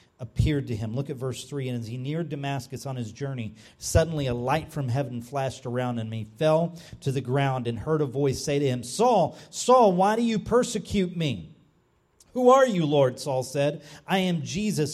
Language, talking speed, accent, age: English, 205 wpm, American, 40-59